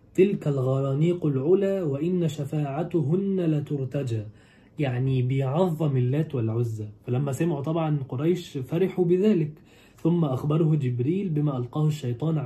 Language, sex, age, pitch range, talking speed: Arabic, male, 20-39, 125-165 Hz, 105 wpm